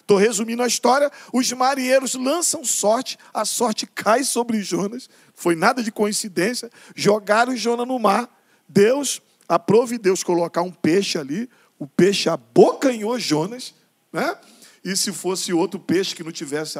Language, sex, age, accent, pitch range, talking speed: Portuguese, male, 50-69, Brazilian, 185-245 Hz, 145 wpm